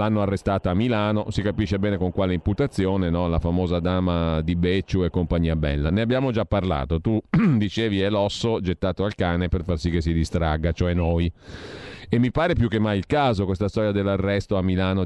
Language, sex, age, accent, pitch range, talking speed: Italian, male, 40-59, native, 90-120 Hz, 205 wpm